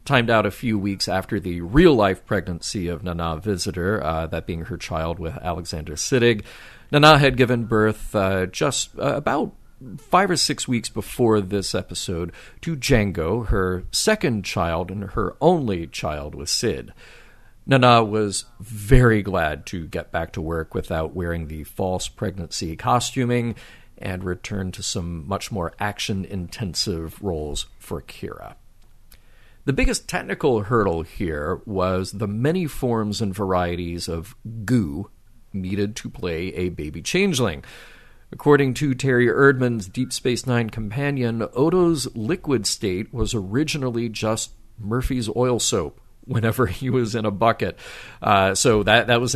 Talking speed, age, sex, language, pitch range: 145 wpm, 40-59, male, English, 90-120 Hz